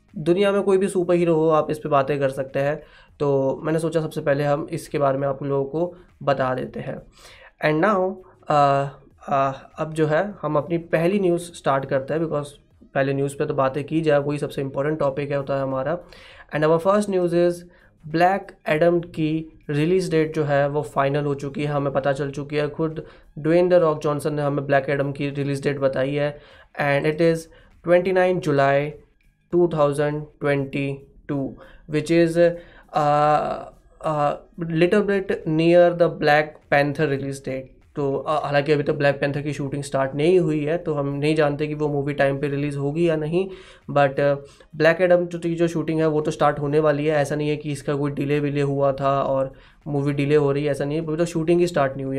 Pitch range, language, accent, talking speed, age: 140-165 Hz, Hindi, native, 205 wpm, 20-39